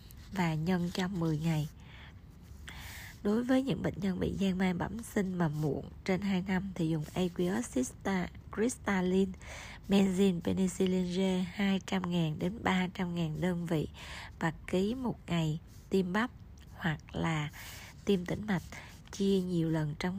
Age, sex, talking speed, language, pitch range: 20-39, female, 140 wpm, Vietnamese, 160-190 Hz